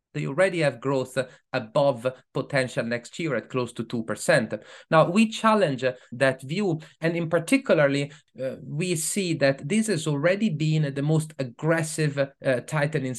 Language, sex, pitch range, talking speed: English, male, 130-165 Hz, 150 wpm